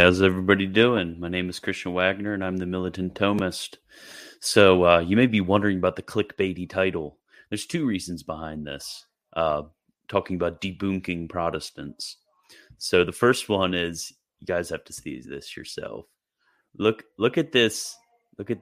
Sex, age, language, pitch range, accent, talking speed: male, 30-49, English, 85-100 Hz, American, 165 wpm